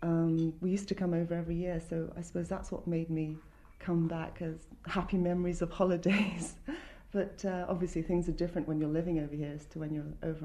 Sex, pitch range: female, 160-185 Hz